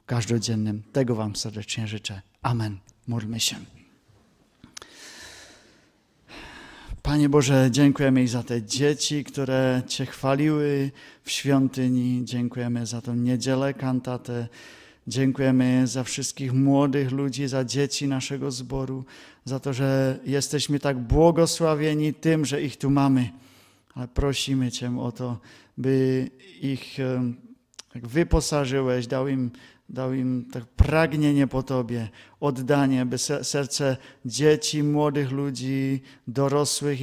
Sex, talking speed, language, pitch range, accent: male, 110 wpm, Czech, 120-140 Hz, Polish